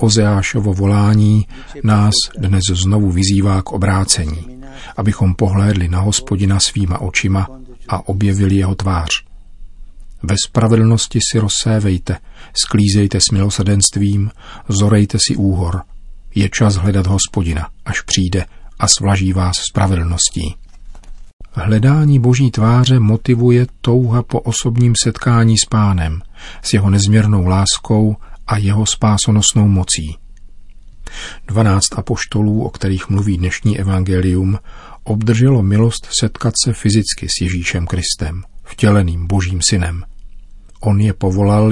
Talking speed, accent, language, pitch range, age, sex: 110 wpm, native, Czech, 95-110 Hz, 40-59, male